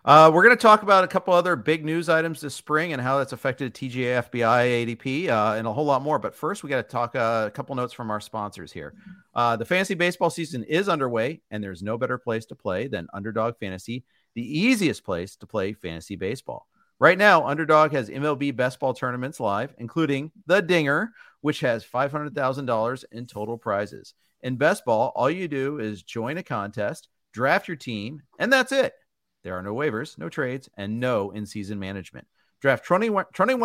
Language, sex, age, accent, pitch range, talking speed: English, male, 40-59, American, 110-155 Hz, 200 wpm